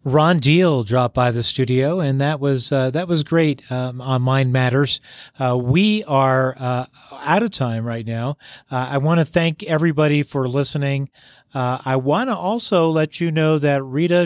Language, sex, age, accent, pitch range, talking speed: English, male, 40-59, American, 130-160 Hz, 185 wpm